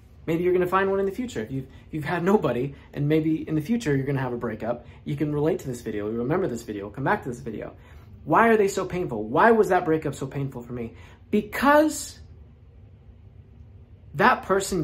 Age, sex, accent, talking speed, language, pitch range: 20-39, male, American, 225 wpm, English, 115-170 Hz